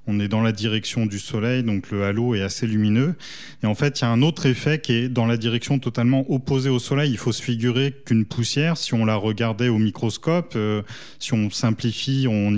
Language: French